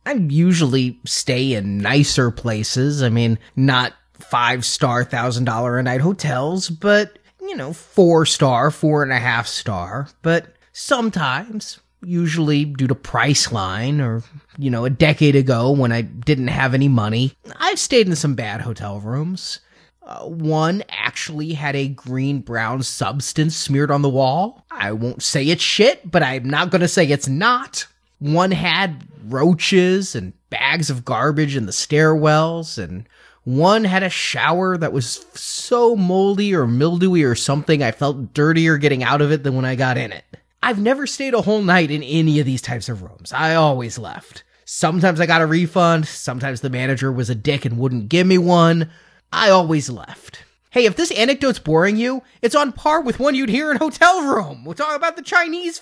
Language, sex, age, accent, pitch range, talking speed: English, male, 30-49, American, 130-185 Hz, 170 wpm